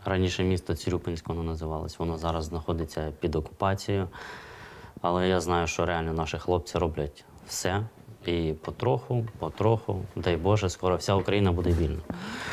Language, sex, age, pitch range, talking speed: Russian, male, 20-39, 85-105 Hz, 140 wpm